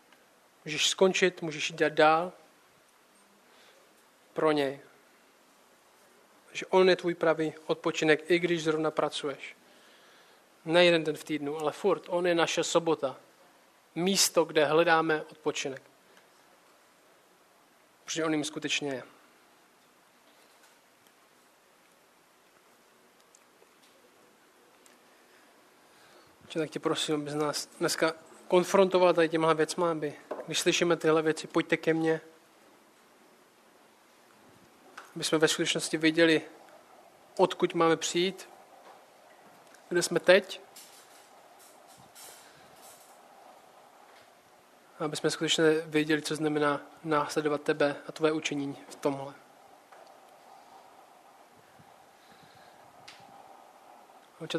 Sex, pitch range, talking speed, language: male, 150-165 Hz, 85 wpm, Czech